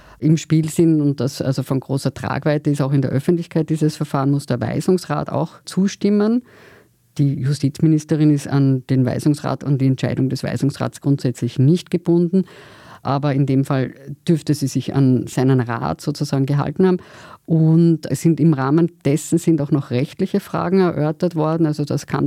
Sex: female